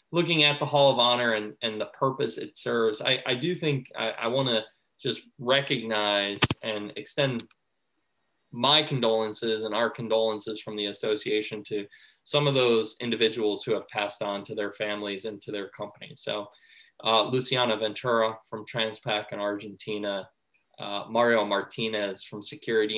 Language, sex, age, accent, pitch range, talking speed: English, male, 20-39, American, 105-125 Hz, 155 wpm